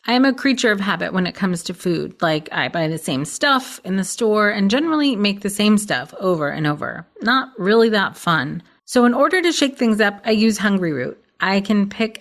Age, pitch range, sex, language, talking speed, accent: 30-49, 190-255 Hz, female, English, 230 wpm, American